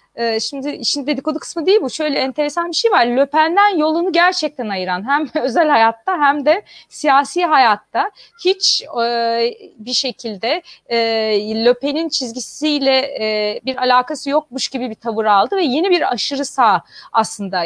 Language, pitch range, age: Turkish, 220-295 Hz, 30-49